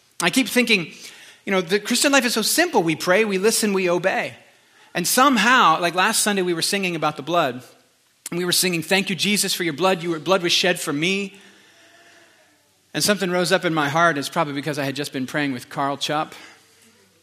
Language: English